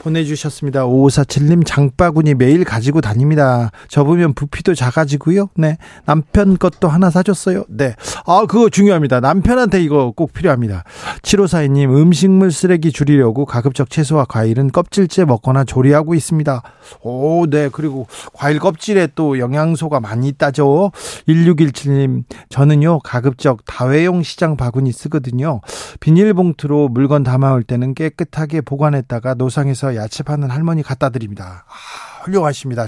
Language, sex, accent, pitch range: Korean, male, native, 130-170 Hz